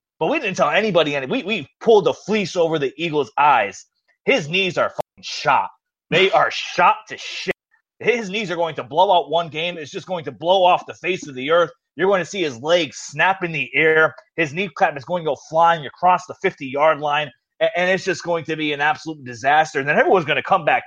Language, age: English, 30-49